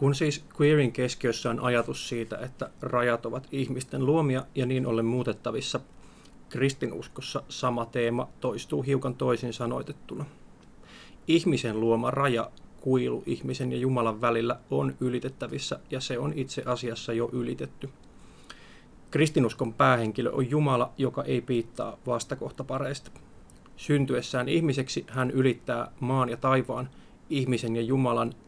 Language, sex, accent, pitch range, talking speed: Finnish, male, native, 120-135 Hz, 125 wpm